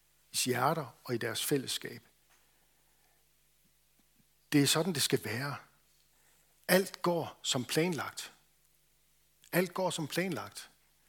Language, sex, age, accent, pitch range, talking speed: Danish, male, 60-79, native, 120-150 Hz, 105 wpm